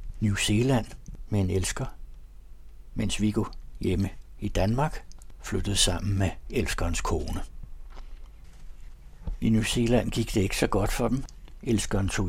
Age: 60-79